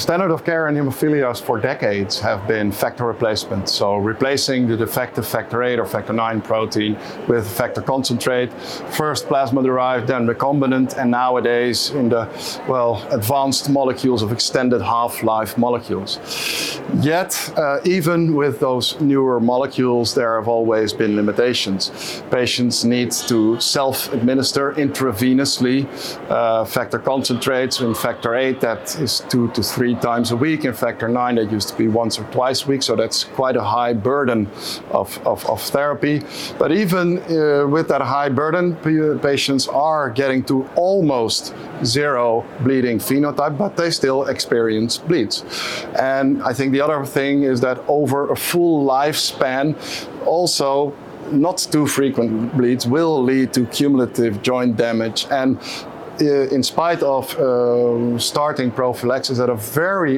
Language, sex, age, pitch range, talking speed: English, male, 50-69, 120-140 Hz, 150 wpm